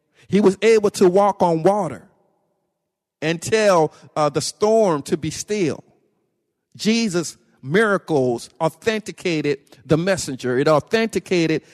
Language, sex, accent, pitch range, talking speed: English, male, American, 155-200 Hz, 110 wpm